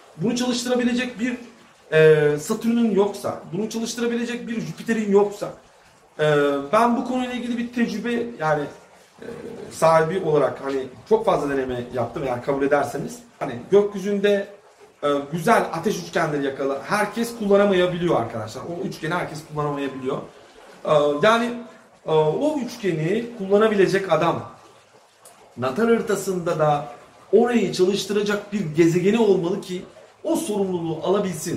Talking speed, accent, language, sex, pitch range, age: 120 wpm, native, Turkish, male, 160-230 Hz, 40-59